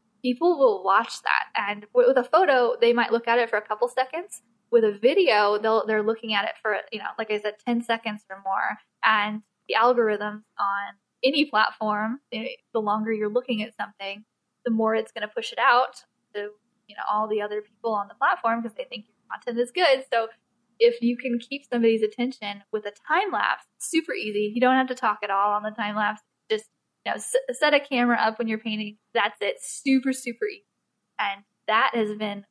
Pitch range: 210-255 Hz